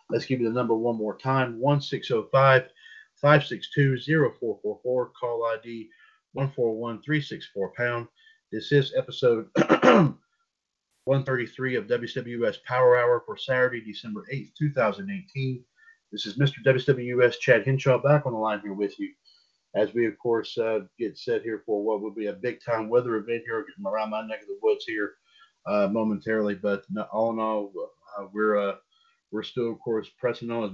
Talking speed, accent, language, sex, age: 165 wpm, American, English, male, 40-59